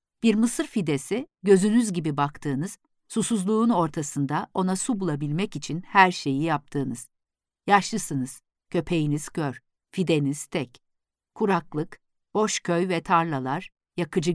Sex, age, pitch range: female, 50-69, 150-205 Hz